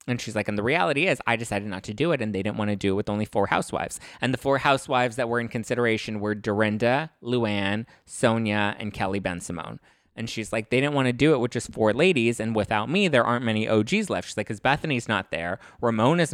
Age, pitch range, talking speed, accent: 20-39, 105-135 Hz, 250 wpm, American